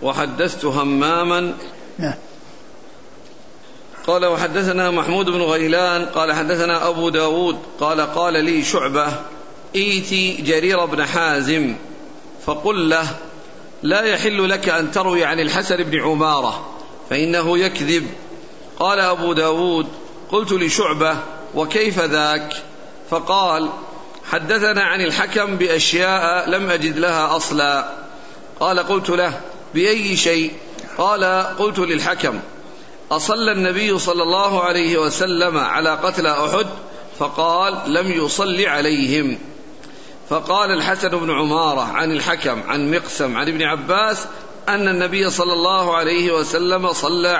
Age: 50-69